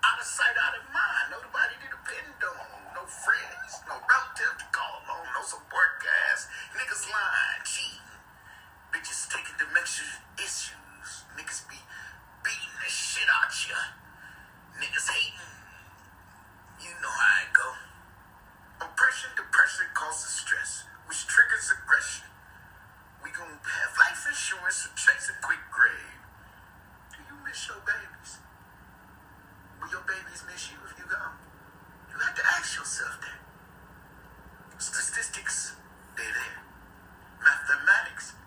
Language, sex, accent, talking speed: English, male, American, 130 wpm